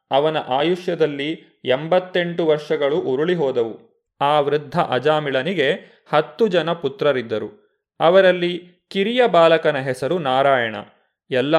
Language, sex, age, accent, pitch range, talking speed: Kannada, male, 30-49, native, 145-185 Hz, 95 wpm